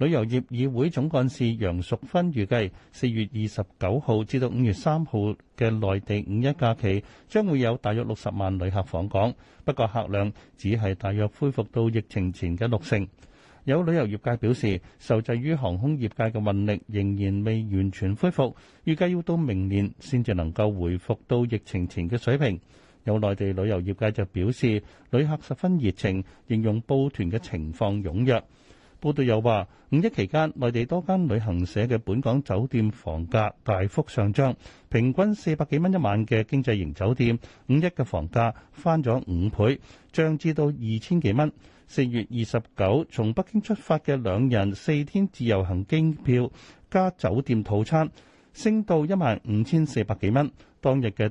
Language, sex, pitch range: Chinese, male, 100-140 Hz